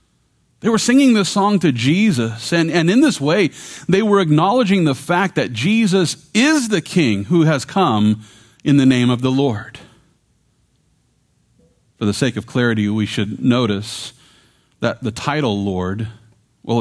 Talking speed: 155 wpm